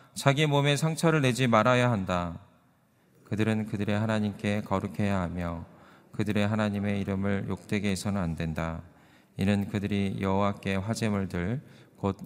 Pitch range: 100-135 Hz